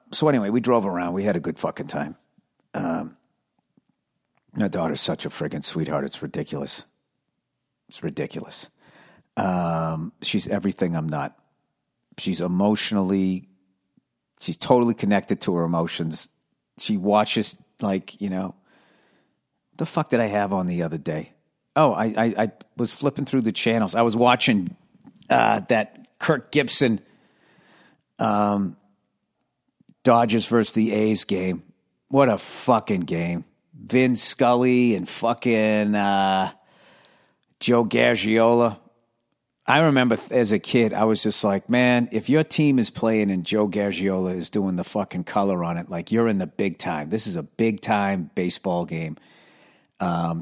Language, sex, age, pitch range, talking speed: English, male, 50-69, 95-115 Hz, 145 wpm